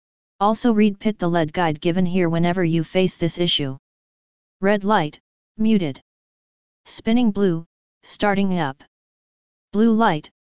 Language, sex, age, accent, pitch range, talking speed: English, female, 30-49, American, 165-200 Hz, 125 wpm